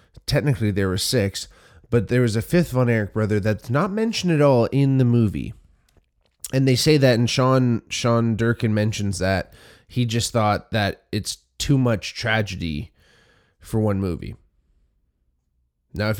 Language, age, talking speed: English, 20-39, 155 wpm